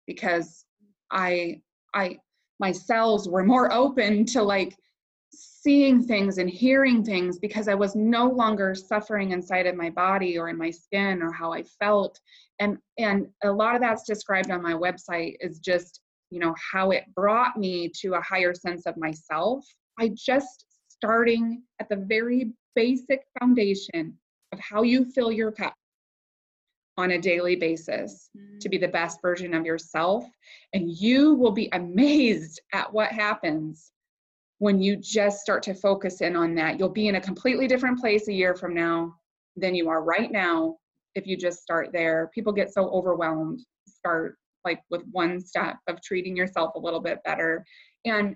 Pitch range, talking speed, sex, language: 175-220 Hz, 170 wpm, female, English